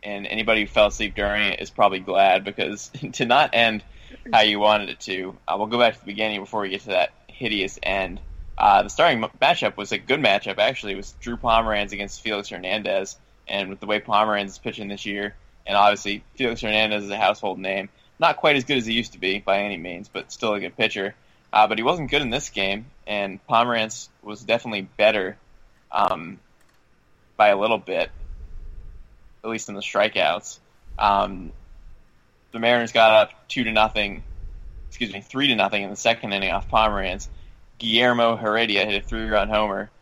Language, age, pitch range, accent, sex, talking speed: English, 20-39, 95-115 Hz, American, male, 195 wpm